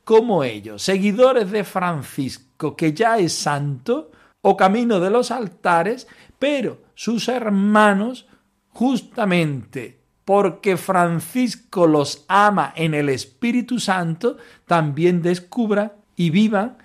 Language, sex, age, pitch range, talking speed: Spanish, male, 50-69, 150-210 Hz, 105 wpm